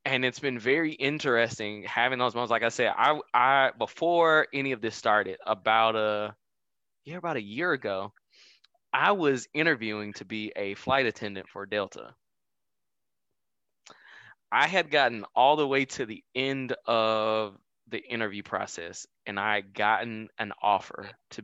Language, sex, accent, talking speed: English, male, American, 155 wpm